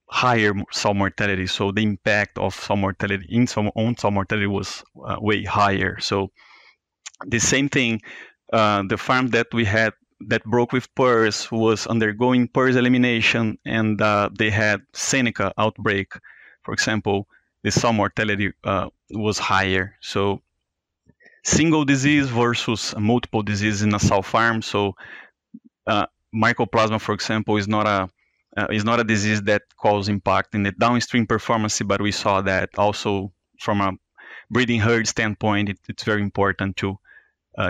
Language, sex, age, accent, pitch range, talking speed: English, male, 30-49, Brazilian, 100-115 Hz, 150 wpm